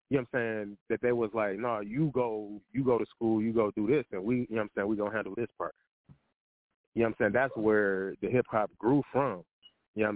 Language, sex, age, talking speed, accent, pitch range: English, male, 20-39, 280 wpm, American, 105-135 Hz